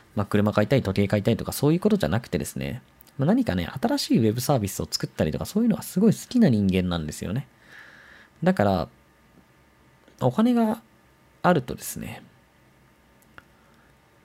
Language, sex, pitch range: Japanese, male, 95-155 Hz